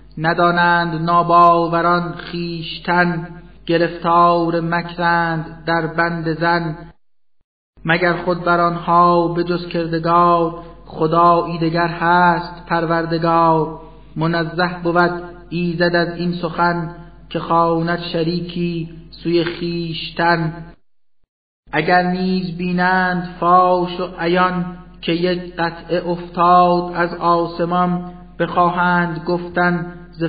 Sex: male